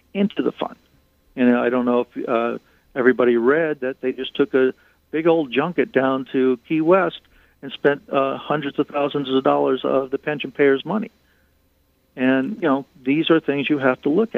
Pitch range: 115-145 Hz